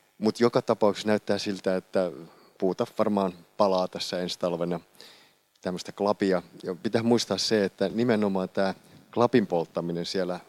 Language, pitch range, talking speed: Finnish, 90-110 Hz, 130 wpm